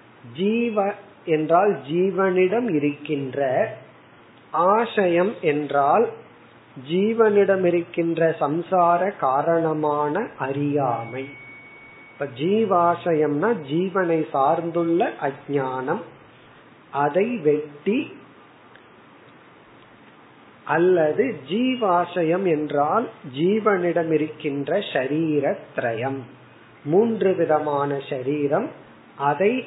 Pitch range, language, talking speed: 145-180 Hz, Tamil, 45 wpm